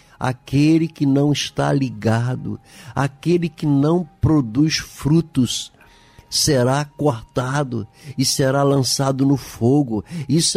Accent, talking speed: Brazilian, 100 wpm